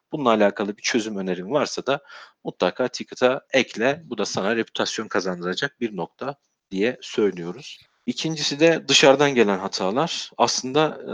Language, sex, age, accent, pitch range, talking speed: Turkish, male, 50-69, native, 95-115 Hz, 135 wpm